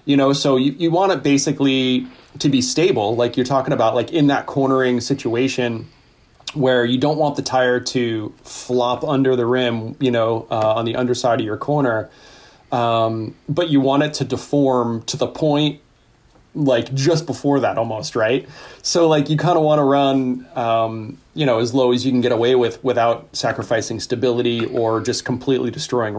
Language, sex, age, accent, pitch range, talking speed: English, male, 30-49, American, 115-135 Hz, 190 wpm